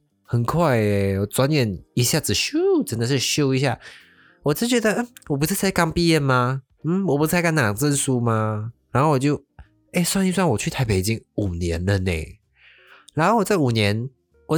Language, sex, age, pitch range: Chinese, male, 20-39, 100-145 Hz